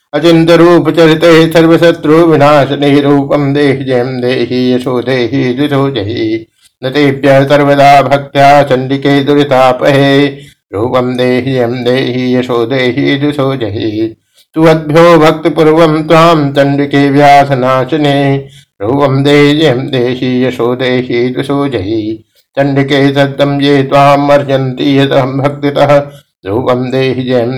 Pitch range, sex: 125-145 Hz, male